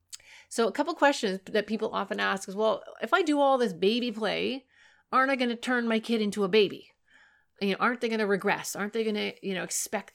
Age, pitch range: 30-49, 180-240 Hz